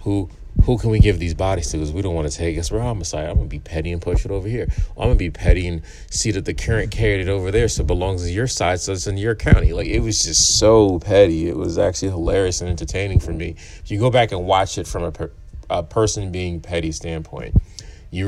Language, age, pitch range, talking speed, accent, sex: English, 30-49, 80-100 Hz, 275 wpm, American, male